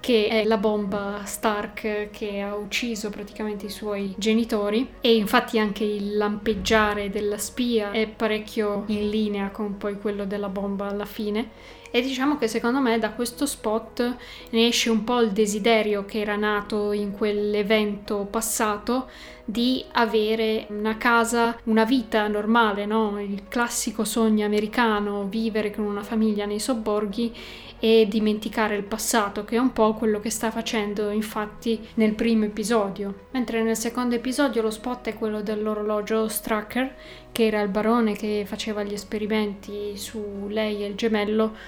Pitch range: 210-230 Hz